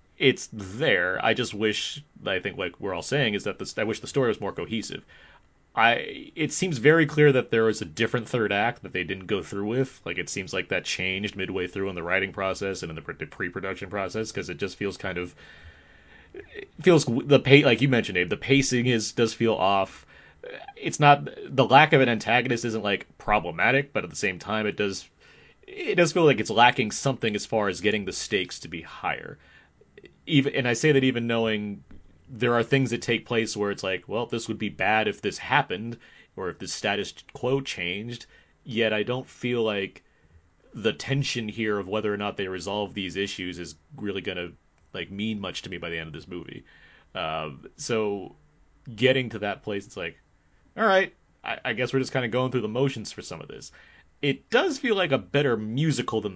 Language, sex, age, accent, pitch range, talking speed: English, male, 30-49, American, 95-130 Hz, 215 wpm